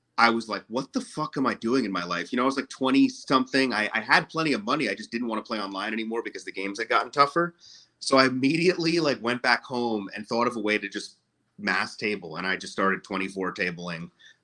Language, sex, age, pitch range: English, male, 30-49, 95-135 Hz